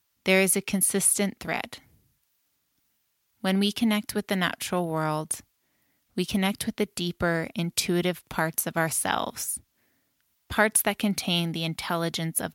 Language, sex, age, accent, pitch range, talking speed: English, female, 20-39, American, 165-195 Hz, 130 wpm